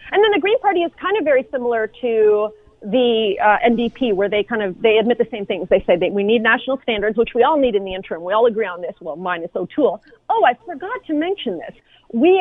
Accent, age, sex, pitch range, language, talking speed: American, 30-49, female, 205-265 Hz, English, 250 wpm